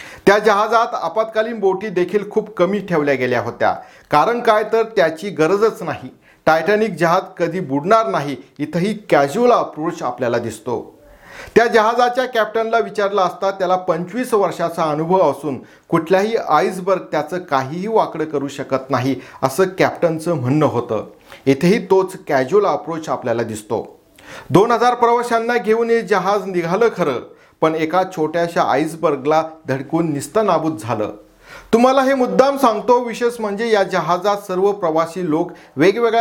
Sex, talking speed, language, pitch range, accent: male, 130 wpm, Marathi, 155-220 Hz, native